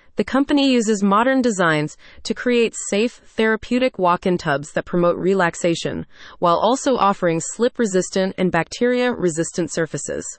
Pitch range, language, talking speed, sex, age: 175-235 Hz, English, 120 wpm, female, 30-49